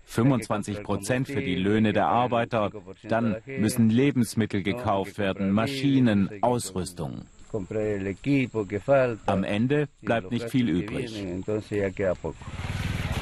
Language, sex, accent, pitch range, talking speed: German, male, German, 100-125 Hz, 90 wpm